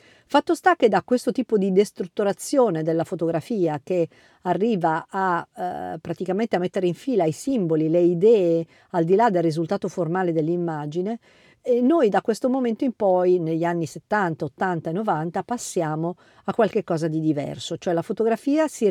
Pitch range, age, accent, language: 165-220 Hz, 50-69, native, Italian